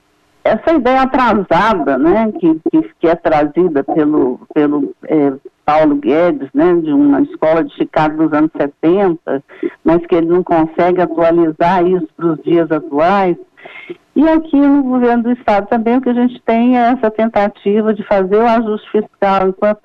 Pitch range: 175-250 Hz